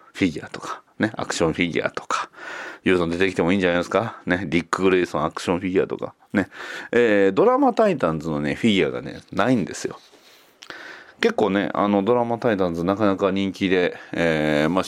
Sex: male